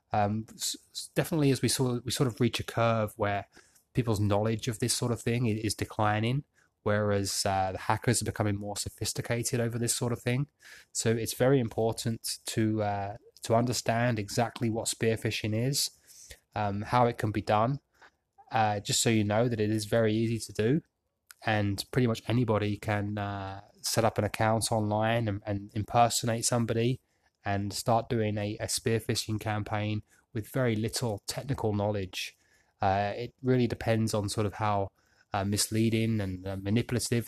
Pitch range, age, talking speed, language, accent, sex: 105-120 Hz, 20-39, 165 wpm, English, British, male